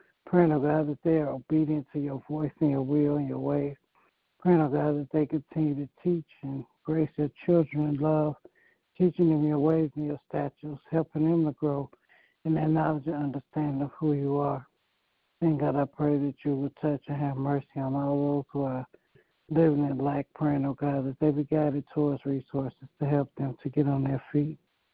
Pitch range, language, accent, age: 140-155 Hz, English, American, 60-79